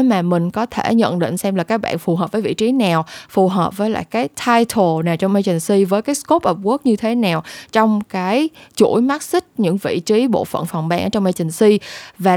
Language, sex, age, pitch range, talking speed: Vietnamese, female, 20-39, 180-235 Hz, 240 wpm